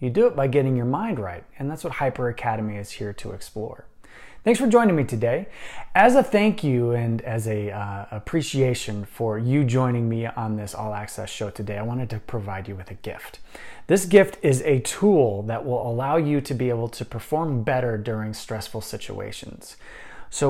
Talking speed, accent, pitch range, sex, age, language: 200 wpm, American, 110-135 Hz, male, 30-49, English